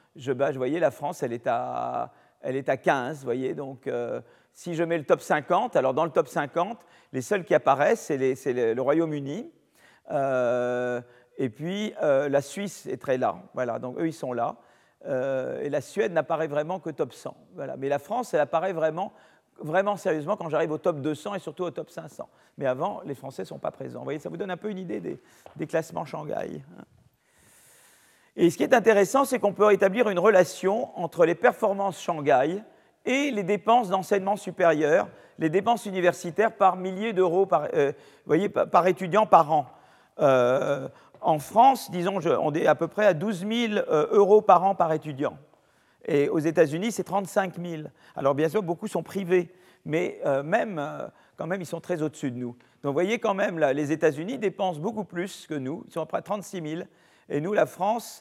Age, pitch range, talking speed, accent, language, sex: 40-59, 155-205 Hz, 205 wpm, French, French, male